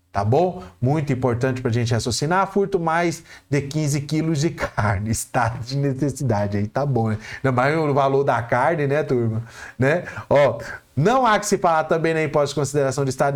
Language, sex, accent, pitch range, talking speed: Portuguese, male, Brazilian, 115-150 Hz, 195 wpm